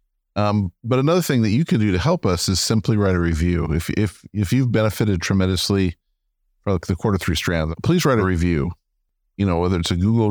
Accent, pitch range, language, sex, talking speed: American, 85-105 Hz, English, male, 210 wpm